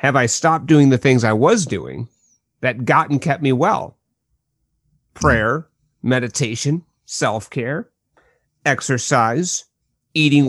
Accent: American